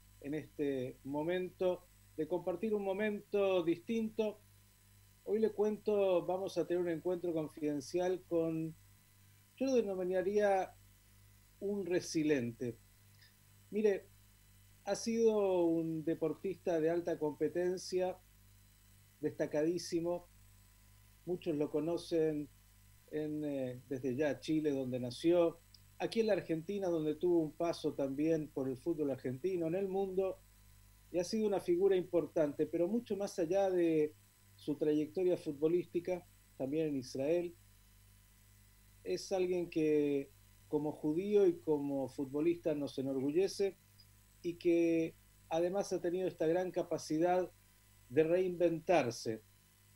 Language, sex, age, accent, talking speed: Spanish, male, 40-59, Argentinian, 115 wpm